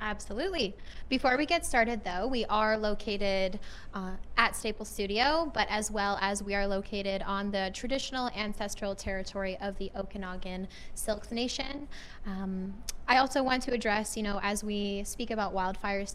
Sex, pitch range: female, 190-215 Hz